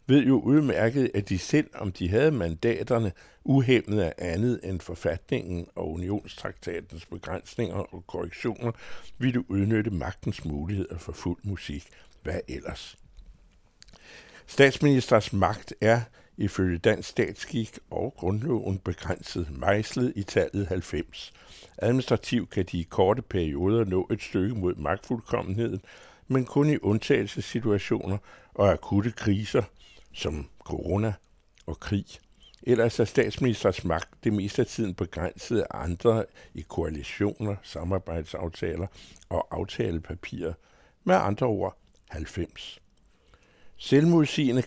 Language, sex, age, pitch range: Danish, male, 60-79, 90-120 Hz